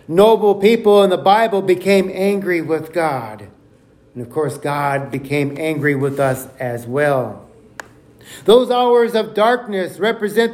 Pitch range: 140-220 Hz